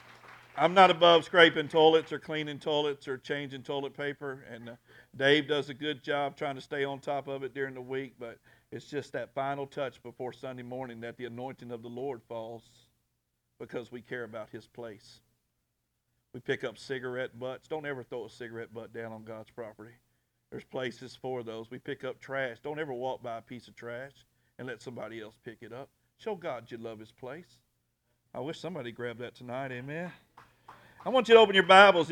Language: English